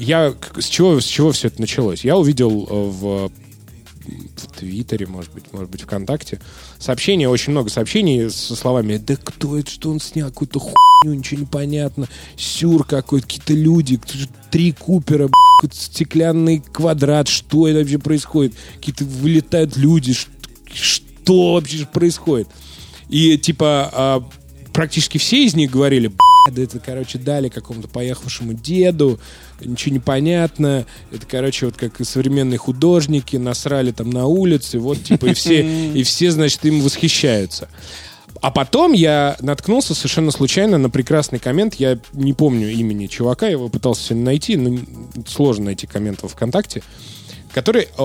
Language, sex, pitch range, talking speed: Russian, male, 115-155 Hz, 145 wpm